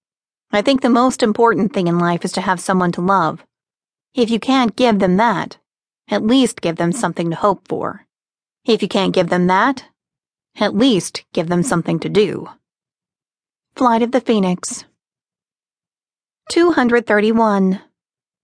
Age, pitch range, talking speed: 30-49, 195-250 Hz, 150 wpm